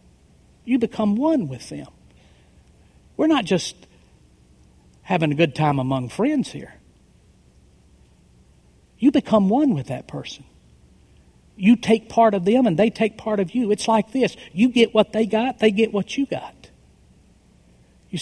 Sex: male